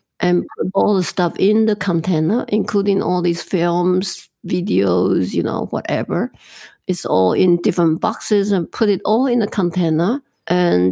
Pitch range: 175-215 Hz